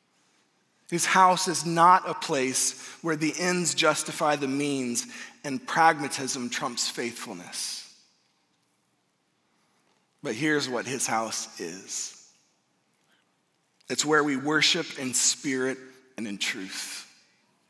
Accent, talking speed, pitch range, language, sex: American, 105 wpm, 130-185 Hz, English, male